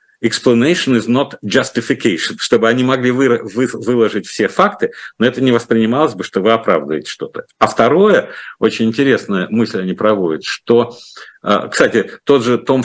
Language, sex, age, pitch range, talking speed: Russian, male, 50-69, 100-125 Hz, 155 wpm